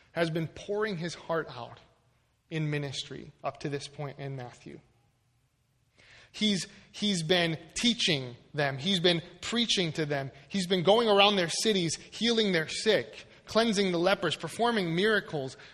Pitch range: 140-200 Hz